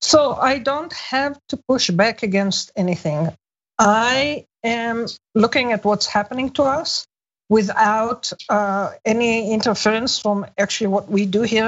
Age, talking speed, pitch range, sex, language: 50-69, 135 wpm, 205-250 Hz, female, English